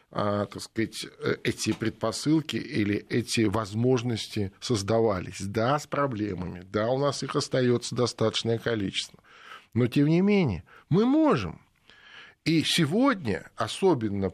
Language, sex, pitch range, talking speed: Russian, male, 100-125 Hz, 105 wpm